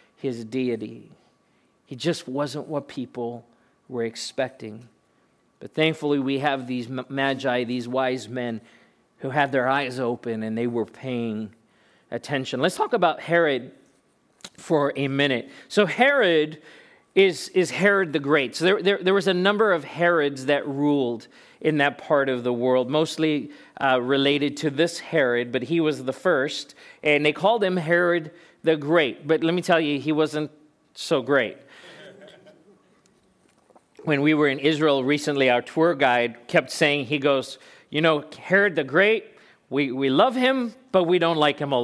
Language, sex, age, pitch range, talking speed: English, male, 40-59, 135-175 Hz, 160 wpm